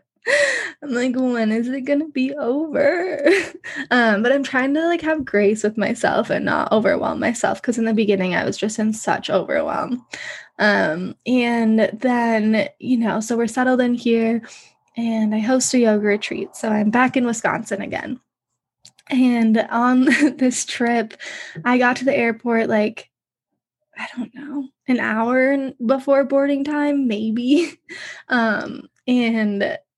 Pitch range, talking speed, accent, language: 220-265 Hz, 150 wpm, American, English